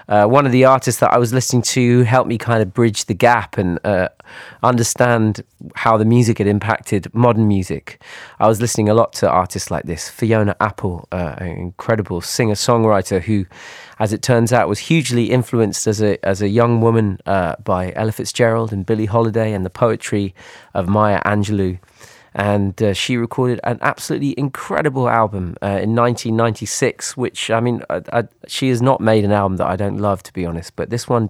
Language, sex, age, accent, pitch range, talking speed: French, male, 20-39, British, 100-120 Hz, 190 wpm